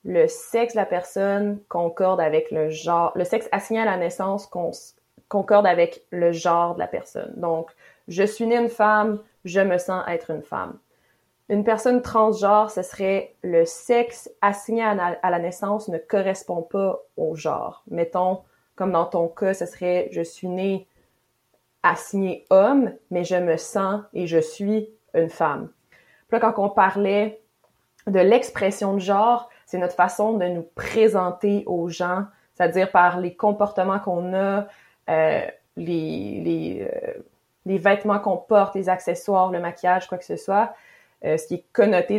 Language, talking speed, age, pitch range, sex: English, 165 wpm, 20-39, 170-205 Hz, female